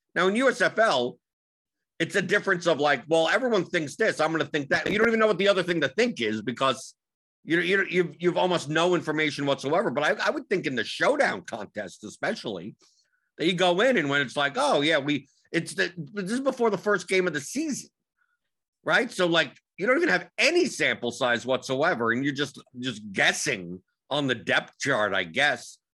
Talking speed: 215 wpm